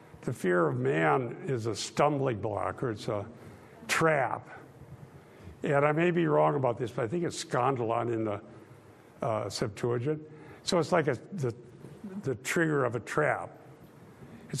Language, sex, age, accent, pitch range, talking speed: English, male, 60-79, American, 130-170 Hz, 160 wpm